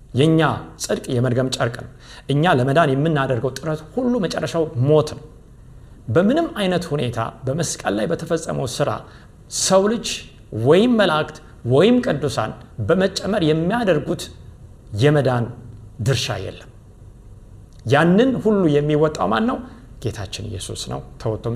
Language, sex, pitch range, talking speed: Amharic, male, 115-165 Hz, 110 wpm